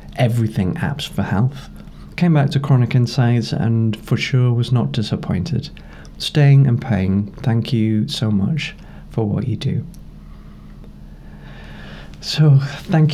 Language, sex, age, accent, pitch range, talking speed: English, male, 20-39, British, 90-140 Hz, 130 wpm